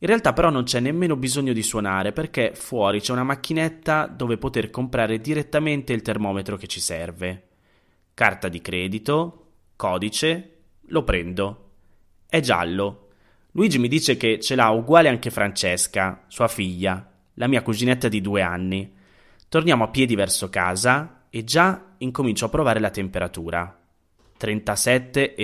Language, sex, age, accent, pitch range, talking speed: Italian, male, 30-49, native, 95-130 Hz, 145 wpm